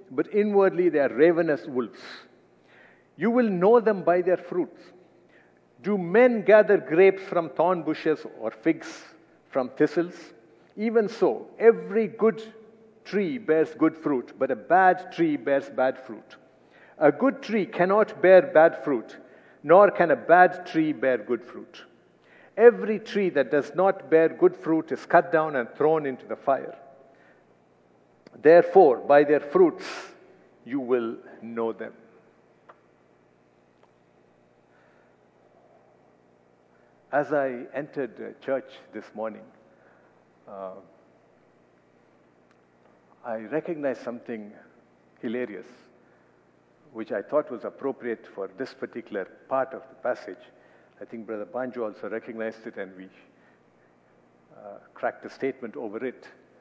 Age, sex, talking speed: 60-79, male, 125 wpm